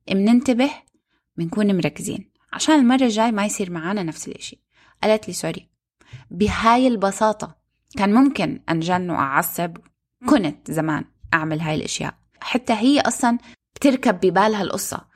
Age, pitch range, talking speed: 20-39, 170-235 Hz, 125 wpm